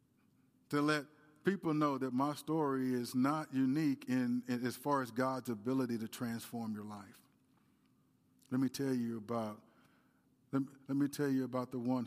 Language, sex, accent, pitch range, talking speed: English, male, American, 120-175 Hz, 175 wpm